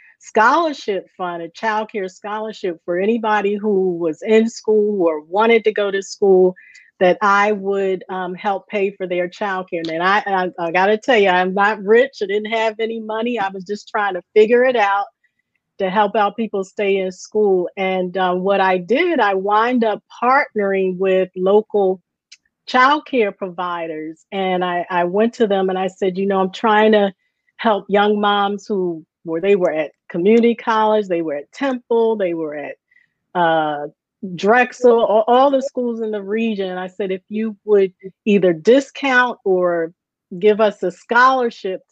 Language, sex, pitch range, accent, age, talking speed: English, female, 185-220 Hz, American, 40-59, 180 wpm